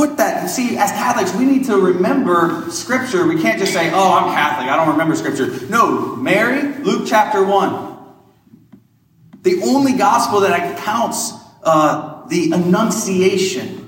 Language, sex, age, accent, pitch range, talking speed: English, male, 30-49, American, 150-210 Hz, 135 wpm